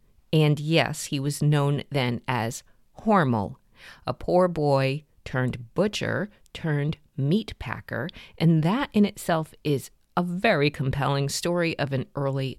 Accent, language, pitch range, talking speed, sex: American, English, 130-175 Hz, 135 wpm, female